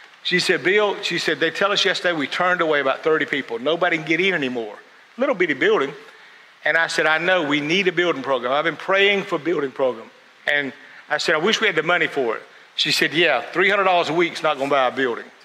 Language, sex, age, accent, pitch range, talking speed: English, male, 50-69, American, 155-200 Hz, 250 wpm